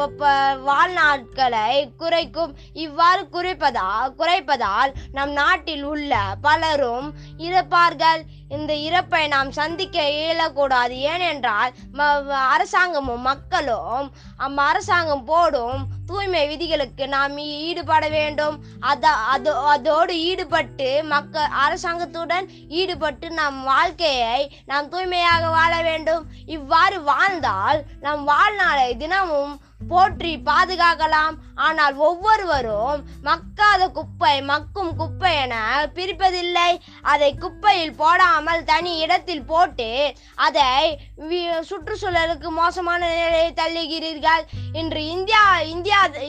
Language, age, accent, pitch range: Tamil, 20-39, native, 285-350 Hz